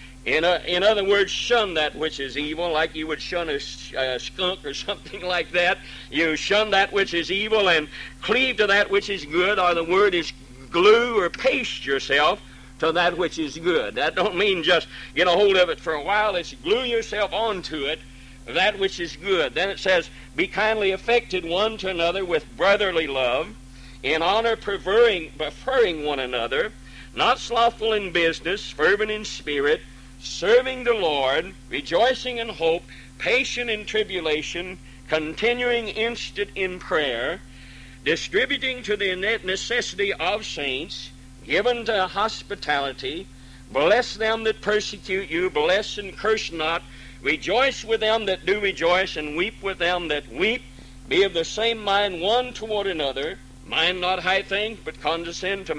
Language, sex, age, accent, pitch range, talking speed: English, male, 60-79, American, 155-215 Hz, 160 wpm